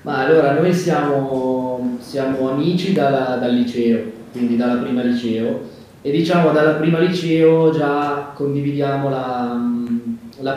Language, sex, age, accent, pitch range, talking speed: Italian, male, 20-39, native, 130-150 Hz, 120 wpm